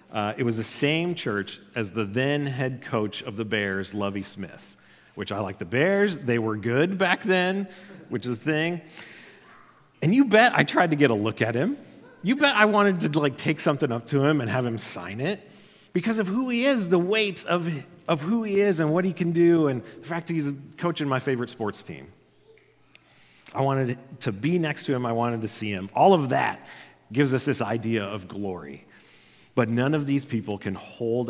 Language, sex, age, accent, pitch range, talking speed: English, male, 40-59, American, 110-160 Hz, 215 wpm